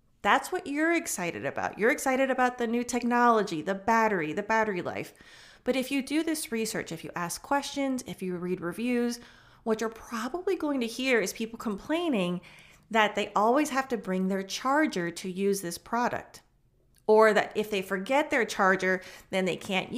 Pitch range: 190-255 Hz